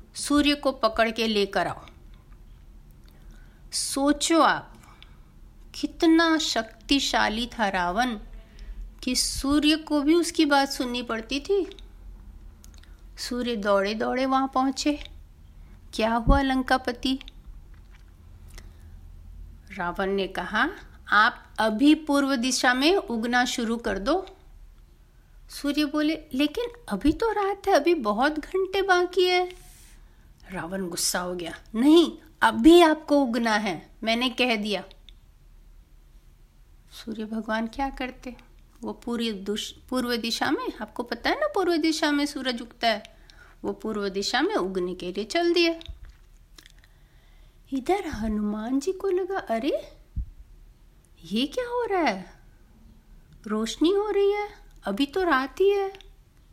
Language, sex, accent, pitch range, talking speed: Hindi, female, native, 210-315 Hz, 120 wpm